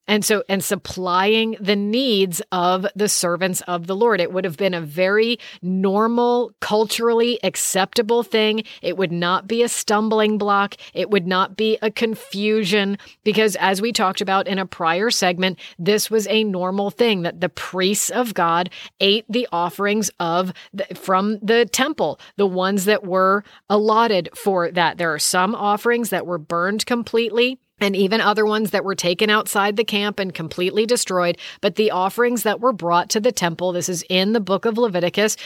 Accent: American